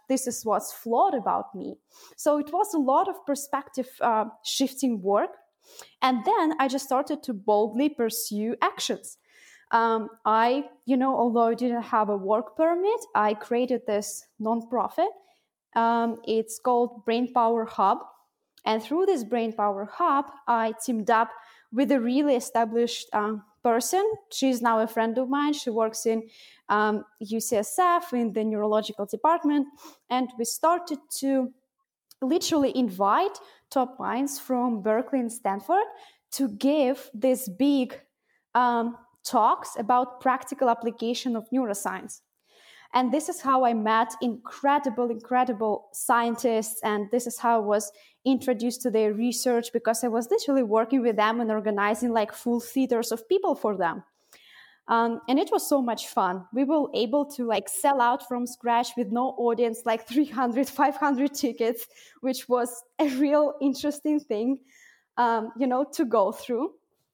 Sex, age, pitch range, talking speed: female, 20-39, 225-275 Hz, 150 wpm